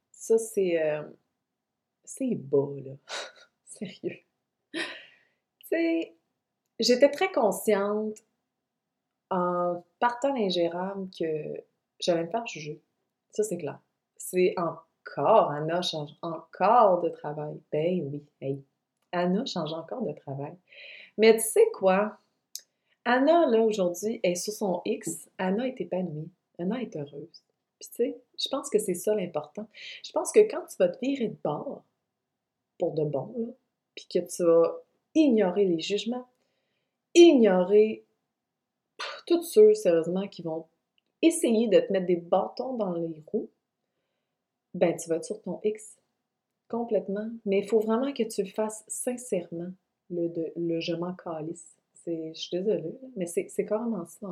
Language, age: French, 30-49